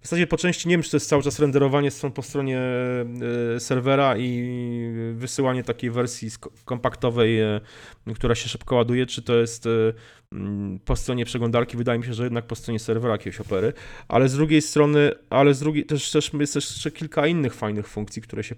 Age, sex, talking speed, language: 30-49, male, 195 wpm, Polish